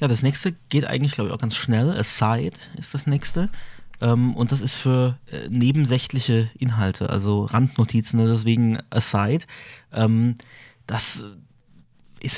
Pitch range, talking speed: 115-140 Hz, 145 wpm